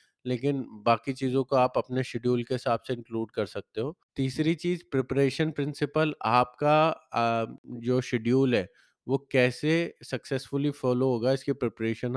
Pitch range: 105-130 Hz